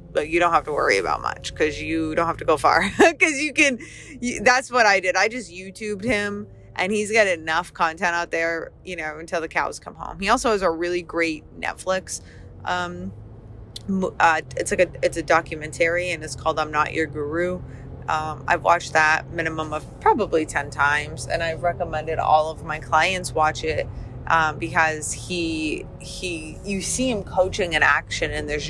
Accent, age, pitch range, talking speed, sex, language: American, 20-39, 155-195 Hz, 195 wpm, female, English